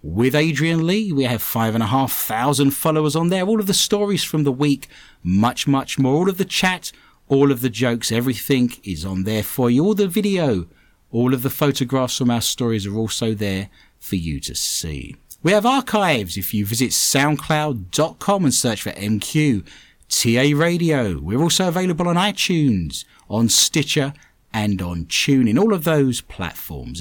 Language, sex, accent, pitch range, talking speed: English, male, British, 110-160 Hz, 180 wpm